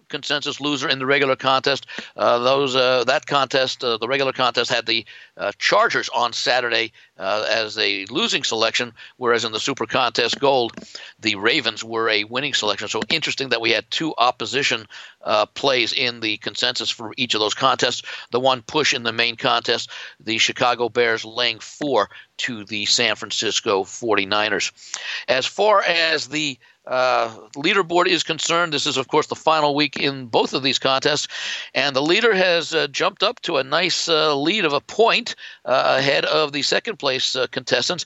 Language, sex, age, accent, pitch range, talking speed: English, male, 60-79, American, 120-160 Hz, 180 wpm